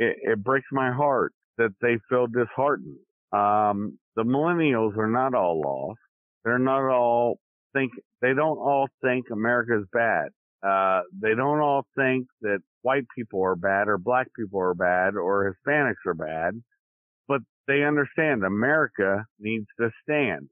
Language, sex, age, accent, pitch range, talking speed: English, male, 50-69, American, 100-135 Hz, 150 wpm